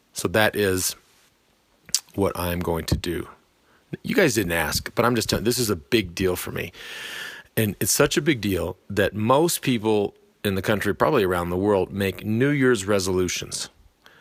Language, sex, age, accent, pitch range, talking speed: English, male, 40-59, American, 95-115 Hz, 180 wpm